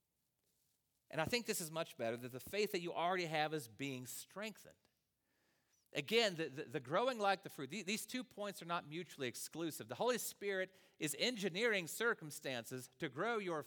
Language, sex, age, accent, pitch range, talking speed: English, male, 40-59, American, 125-185 Hz, 180 wpm